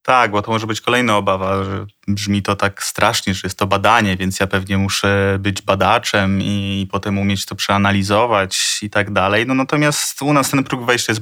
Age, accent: 20-39, native